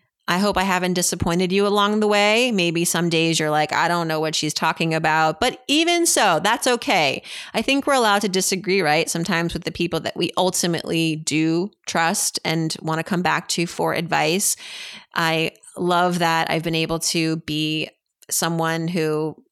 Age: 30-49